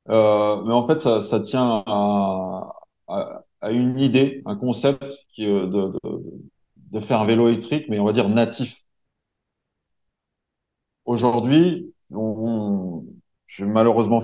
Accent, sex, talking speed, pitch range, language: French, male, 140 wpm, 100-120 Hz, French